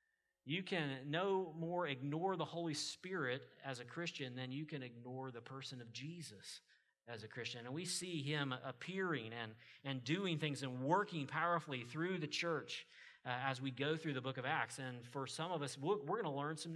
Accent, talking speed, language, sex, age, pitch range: American, 200 wpm, English, male, 40-59, 135-180 Hz